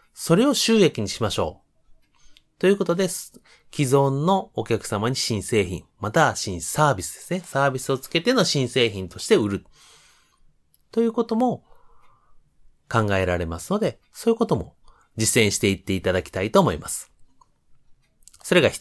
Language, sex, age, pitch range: Japanese, male, 30-49, 110-180 Hz